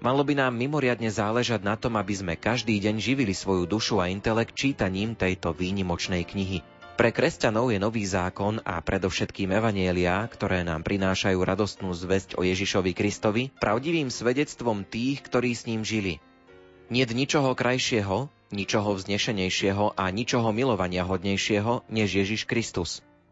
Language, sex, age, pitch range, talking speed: Slovak, male, 30-49, 95-115 Hz, 140 wpm